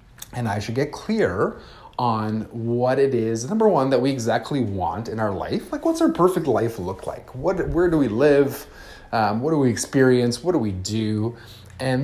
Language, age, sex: English, 30-49, male